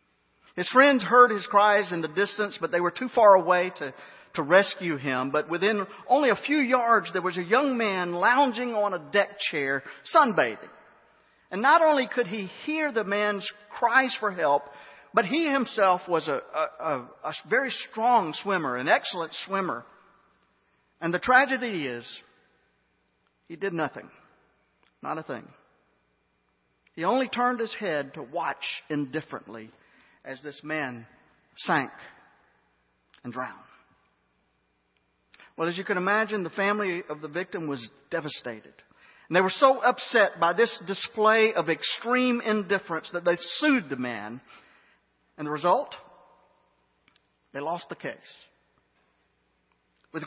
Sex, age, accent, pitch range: male, 50-69, American, 125-210 Hz